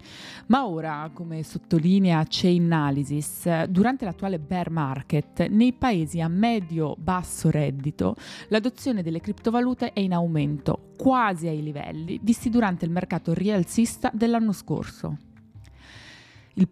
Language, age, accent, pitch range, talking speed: Italian, 20-39, native, 150-195 Hz, 110 wpm